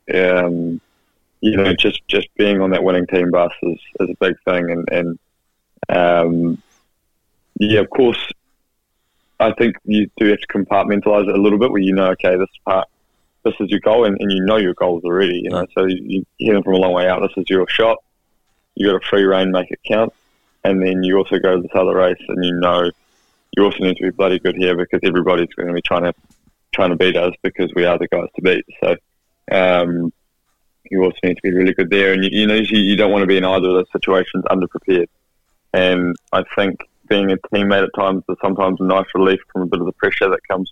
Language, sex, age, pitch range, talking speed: English, male, 20-39, 90-95 Hz, 230 wpm